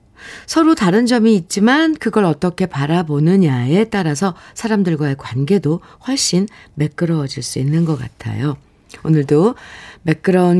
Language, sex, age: Korean, female, 50-69